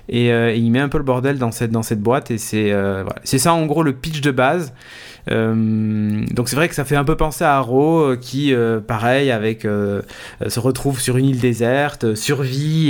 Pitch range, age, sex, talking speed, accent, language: 110-140 Hz, 20-39, male, 235 wpm, French, French